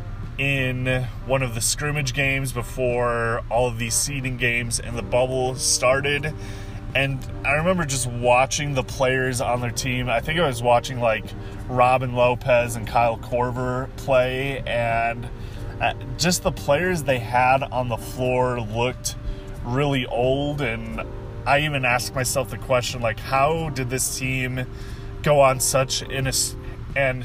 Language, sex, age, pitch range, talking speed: English, male, 20-39, 115-130 Hz, 150 wpm